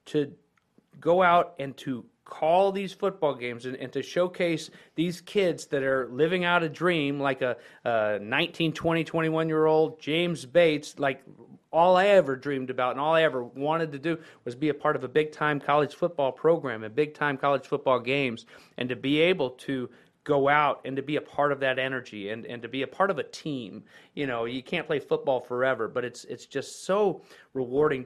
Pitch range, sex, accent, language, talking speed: 135-165 Hz, male, American, English, 200 wpm